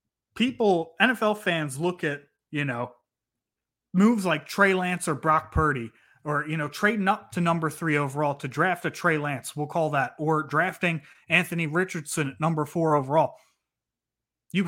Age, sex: 30-49, male